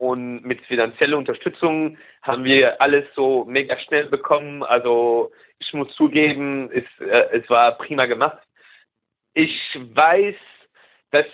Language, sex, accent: German, male, German